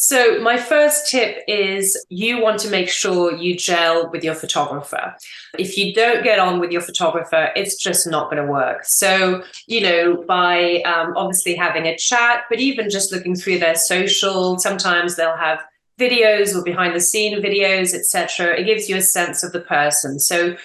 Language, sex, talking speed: English, female, 185 wpm